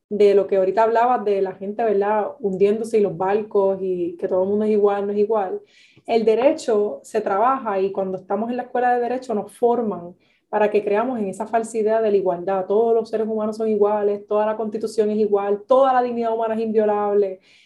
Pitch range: 200-250 Hz